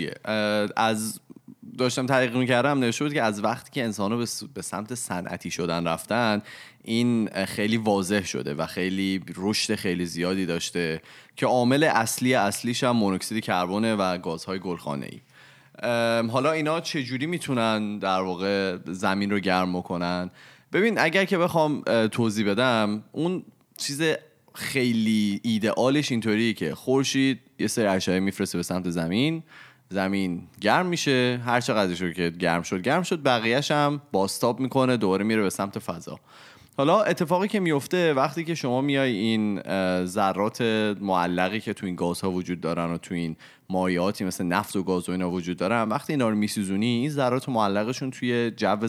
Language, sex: Persian, male